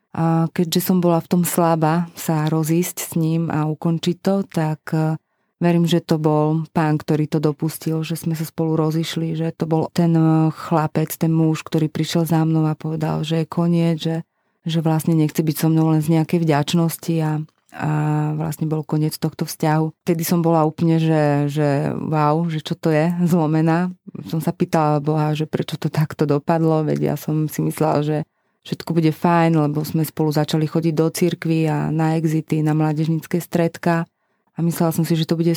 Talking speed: 190 wpm